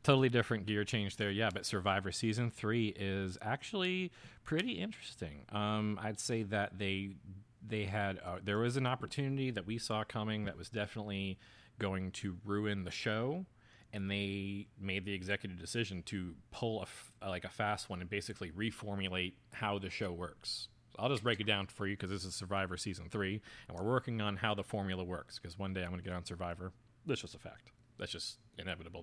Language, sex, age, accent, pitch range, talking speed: English, male, 30-49, American, 95-115 Hz, 205 wpm